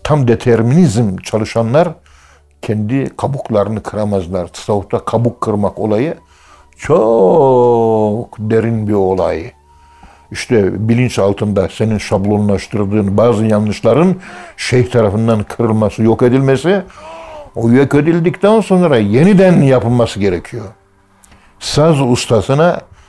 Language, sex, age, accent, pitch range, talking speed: Turkish, male, 60-79, native, 105-155 Hz, 90 wpm